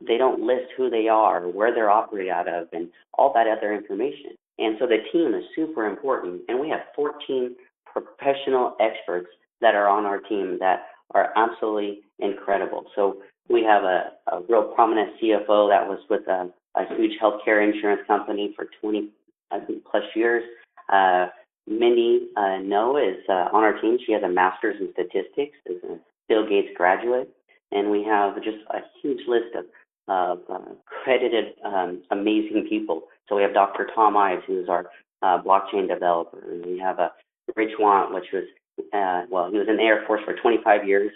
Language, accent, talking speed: English, American, 180 wpm